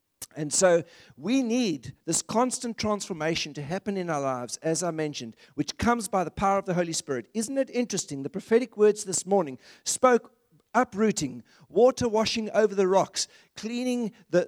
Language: English